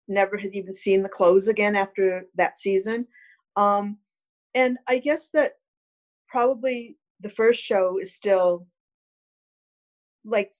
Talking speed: 125 wpm